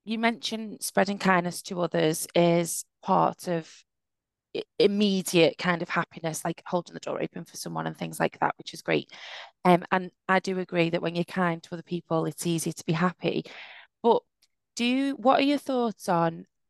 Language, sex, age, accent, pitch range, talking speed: English, female, 20-39, British, 170-205 Hz, 185 wpm